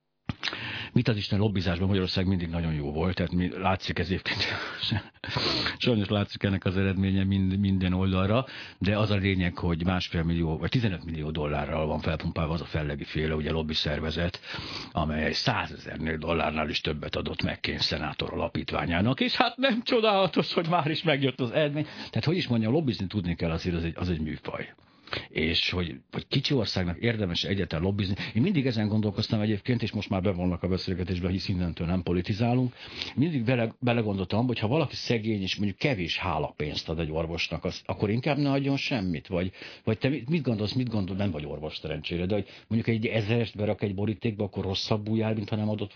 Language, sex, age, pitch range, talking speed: Hungarian, male, 60-79, 85-115 Hz, 190 wpm